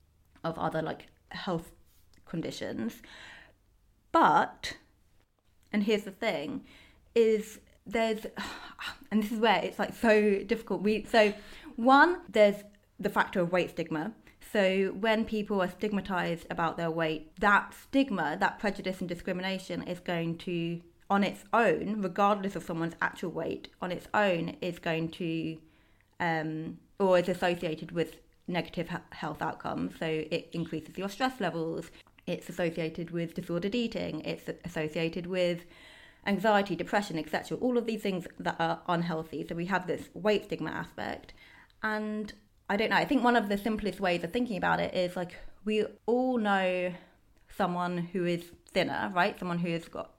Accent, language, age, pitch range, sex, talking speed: British, English, 20-39, 165-210 Hz, female, 155 wpm